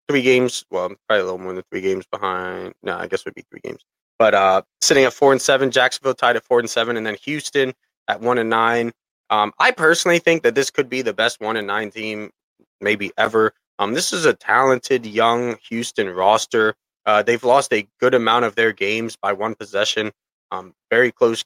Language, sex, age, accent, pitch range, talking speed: English, male, 20-39, American, 105-125 Hz, 220 wpm